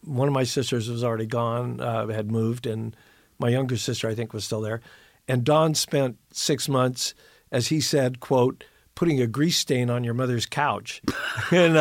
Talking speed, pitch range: 190 wpm, 115-140 Hz